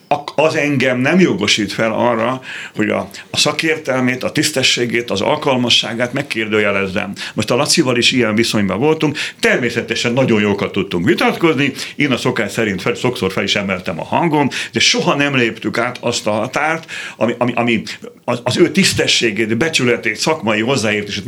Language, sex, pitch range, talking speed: Hungarian, male, 115-150 Hz, 155 wpm